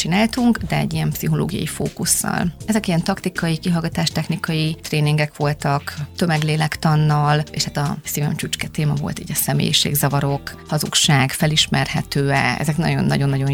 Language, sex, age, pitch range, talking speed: Hungarian, female, 30-49, 140-165 Hz, 120 wpm